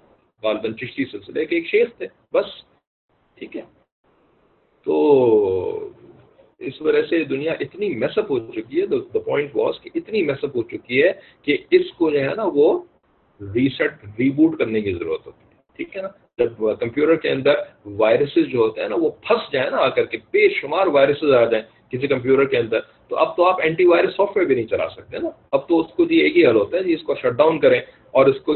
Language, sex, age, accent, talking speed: English, male, 50-69, Indian, 160 wpm